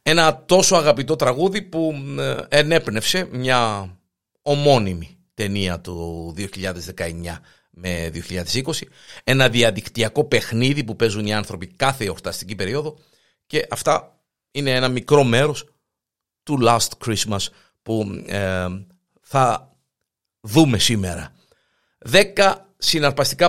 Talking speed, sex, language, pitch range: 100 wpm, male, Greek, 105-145 Hz